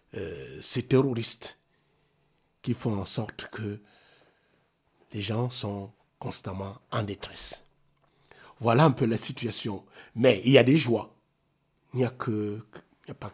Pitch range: 100-130 Hz